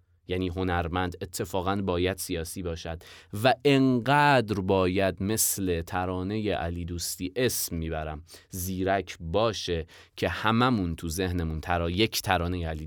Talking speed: 115 wpm